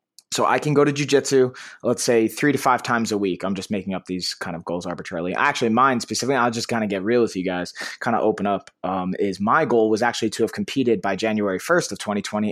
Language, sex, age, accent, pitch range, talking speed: English, male, 20-39, American, 100-125 Hz, 255 wpm